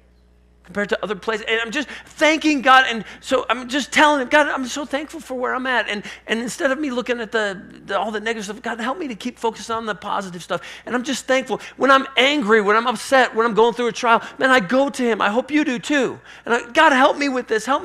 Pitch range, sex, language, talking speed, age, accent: 200-255 Hz, male, English, 270 wpm, 40-59, American